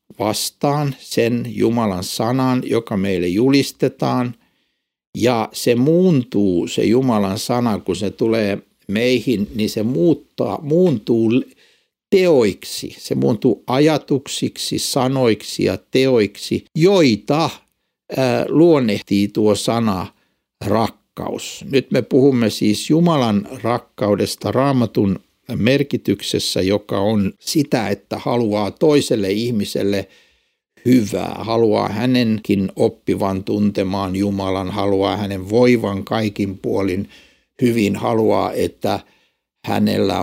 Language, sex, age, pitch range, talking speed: Finnish, male, 60-79, 100-125 Hz, 95 wpm